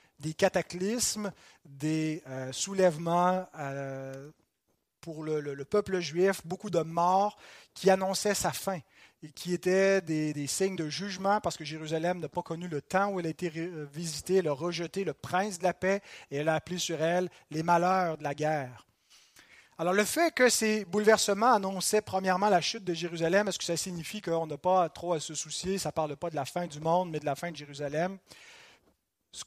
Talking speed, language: 190 wpm, French